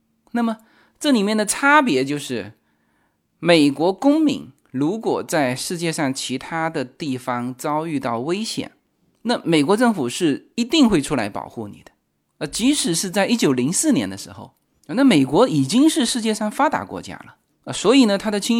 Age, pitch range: 20-39, 140-235 Hz